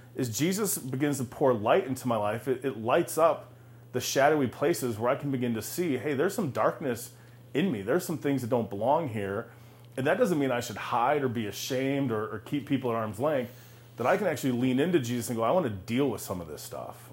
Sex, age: male, 30-49